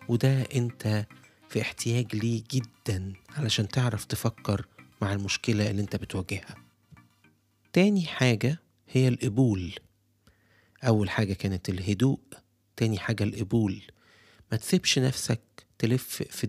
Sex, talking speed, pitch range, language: male, 110 wpm, 100-120 Hz, Arabic